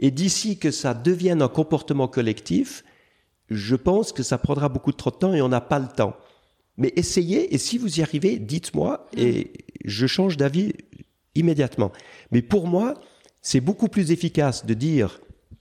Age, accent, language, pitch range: 50-69, French, French, 130-180 Hz